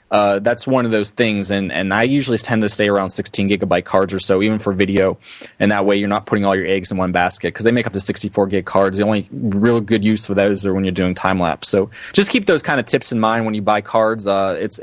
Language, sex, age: English, male, 20-39